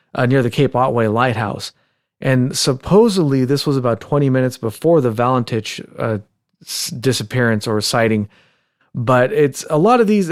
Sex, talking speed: male, 150 wpm